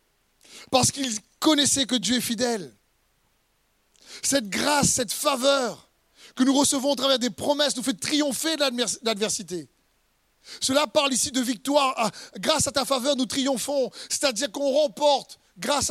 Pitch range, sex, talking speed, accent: 250-295 Hz, male, 145 wpm, French